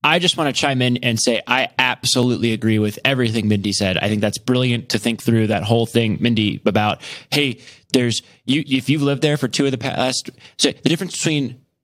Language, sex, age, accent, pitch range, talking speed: English, male, 20-39, American, 110-135 Hz, 220 wpm